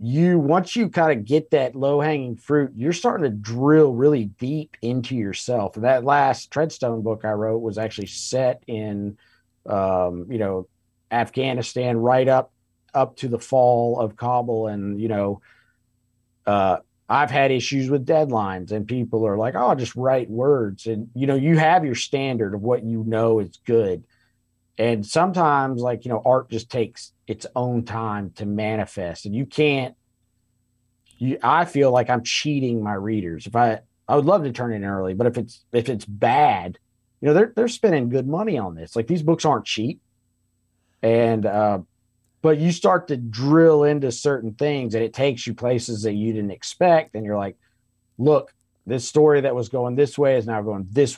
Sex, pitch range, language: male, 110-135 Hz, English